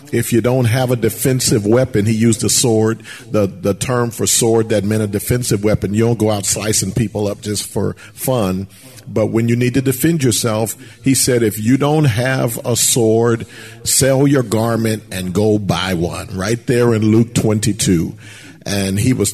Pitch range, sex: 100-125 Hz, male